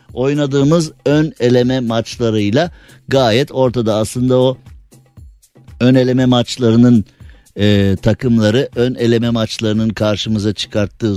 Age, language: 60-79, Turkish